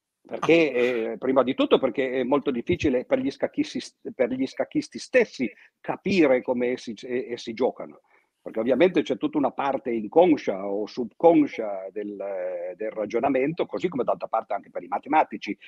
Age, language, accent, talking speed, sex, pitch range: 50-69, Italian, native, 155 wpm, male, 120-175 Hz